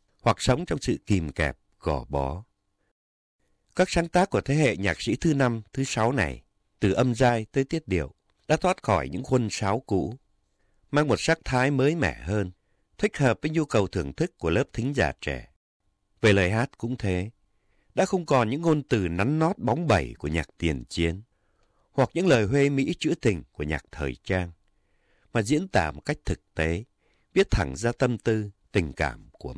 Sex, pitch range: male, 90-130 Hz